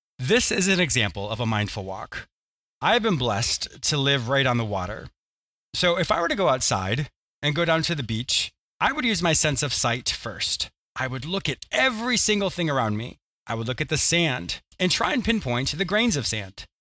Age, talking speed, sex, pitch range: 30-49, 220 wpm, male, 120-170 Hz